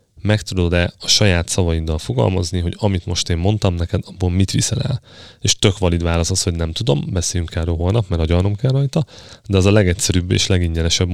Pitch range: 90-110 Hz